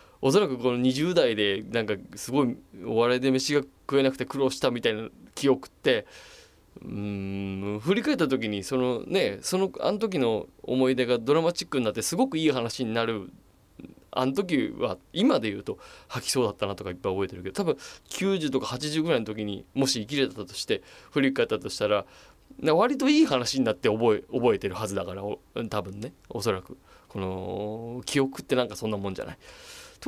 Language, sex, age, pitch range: Japanese, male, 20-39, 105-150 Hz